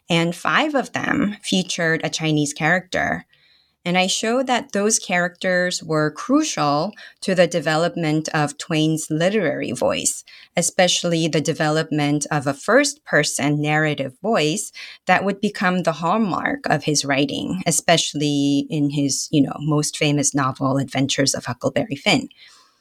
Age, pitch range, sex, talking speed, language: 30-49, 150-200 Hz, female, 130 wpm, English